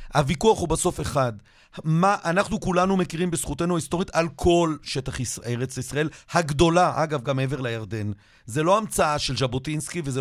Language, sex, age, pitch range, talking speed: Hebrew, male, 40-59, 135-180 Hz, 160 wpm